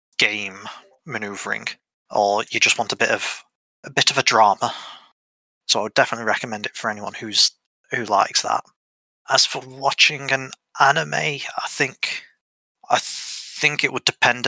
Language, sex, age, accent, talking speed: English, male, 20-39, British, 160 wpm